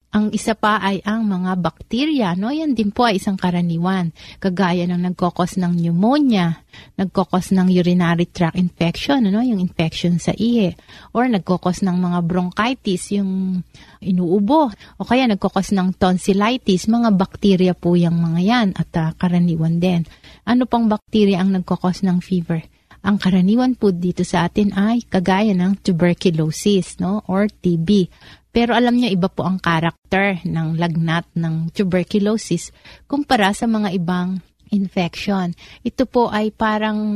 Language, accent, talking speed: Filipino, native, 145 wpm